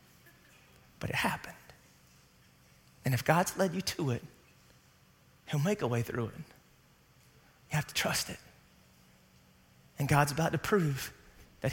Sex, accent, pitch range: male, American, 165-240 Hz